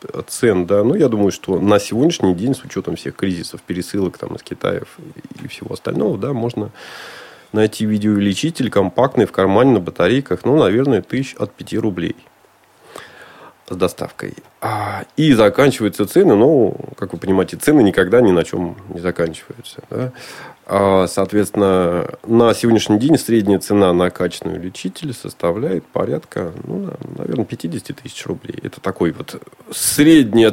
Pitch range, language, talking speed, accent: 95-130 Hz, Russian, 140 wpm, native